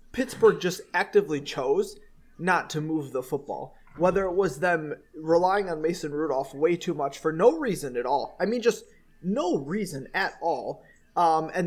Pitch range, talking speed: 155-240 Hz, 175 wpm